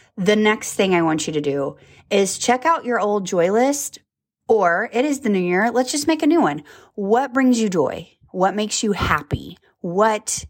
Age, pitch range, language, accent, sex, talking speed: 20-39, 160-215 Hz, English, American, female, 205 wpm